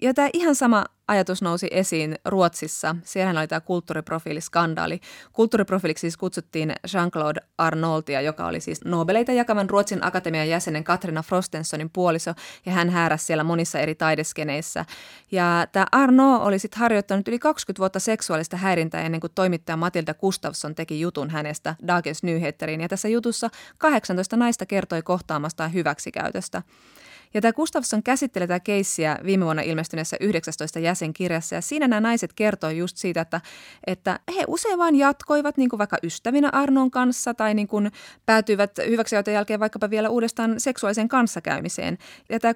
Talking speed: 150 wpm